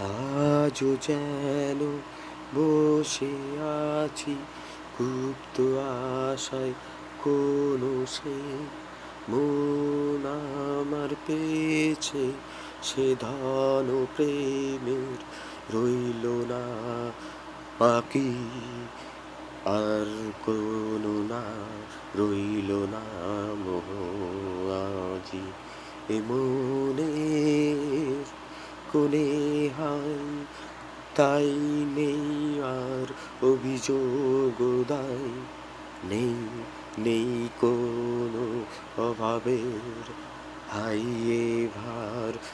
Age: 30-49